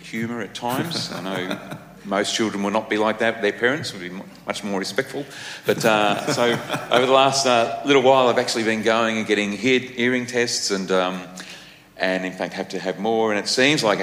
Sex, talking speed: male, 215 wpm